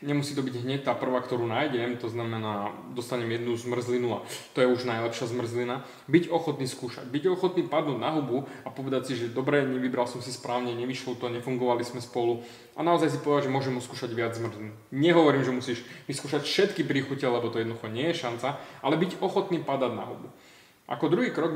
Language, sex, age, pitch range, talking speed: Slovak, male, 20-39, 120-145 Hz, 200 wpm